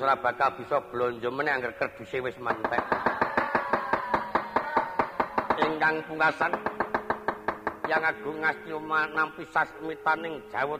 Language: Indonesian